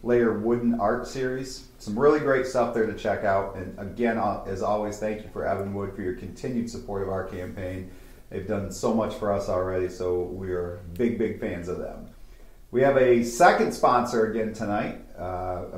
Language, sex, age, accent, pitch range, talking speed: English, male, 40-59, American, 100-120 Hz, 195 wpm